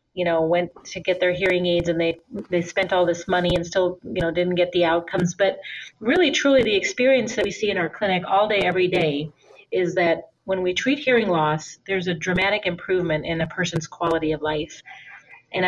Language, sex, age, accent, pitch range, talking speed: English, female, 30-49, American, 180-215 Hz, 215 wpm